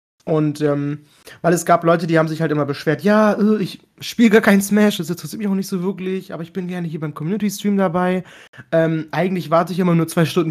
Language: German